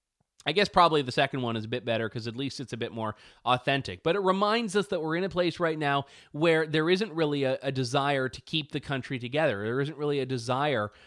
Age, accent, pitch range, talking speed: 30-49, American, 140-180 Hz, 250 wpm